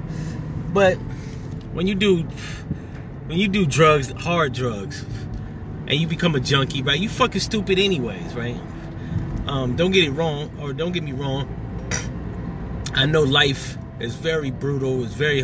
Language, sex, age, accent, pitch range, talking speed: English, male, 30-49, American, 125-160 Hz, 150 wpm